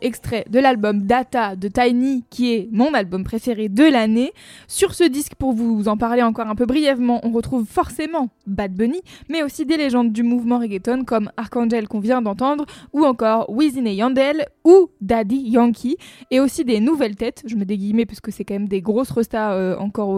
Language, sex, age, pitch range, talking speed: French, female, 20-39, 215-255 Hz, 195 wpm